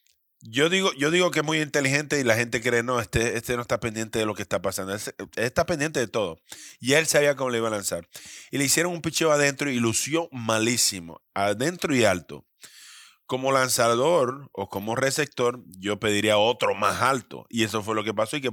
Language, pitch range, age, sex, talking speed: English, 105-140 Hz, 30-49, male, 215 wpm